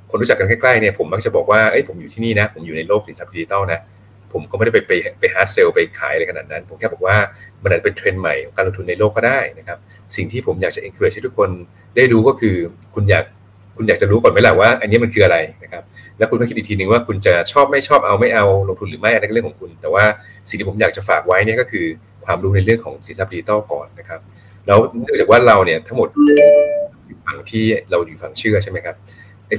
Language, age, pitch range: Thai, 30-49, 100-145 Hz